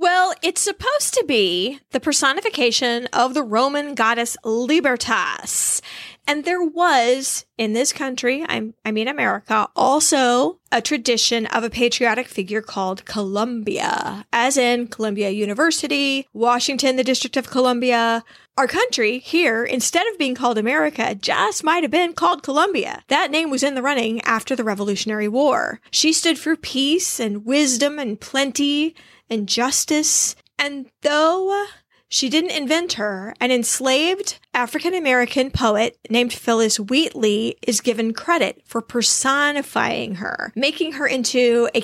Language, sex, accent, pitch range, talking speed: English, female, American, 230-305 Hz, 140 wpm